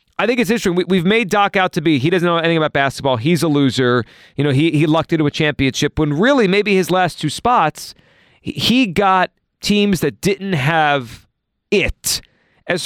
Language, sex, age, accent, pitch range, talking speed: English, male, 40-59, American, 140-180 Hz, 200 wpm